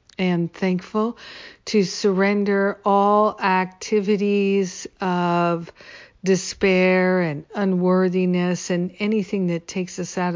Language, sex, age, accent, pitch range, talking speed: English, female, 50-69, American, 180-200 Hz, 95 wpm